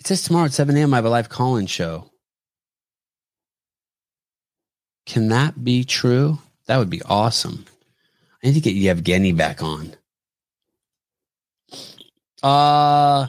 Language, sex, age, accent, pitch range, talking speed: English, male, 30-49, American, 95-130 Hz, 125 wpm